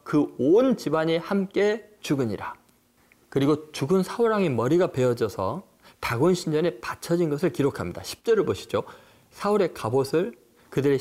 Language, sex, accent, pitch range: Korean, male, native, 130-195 Hz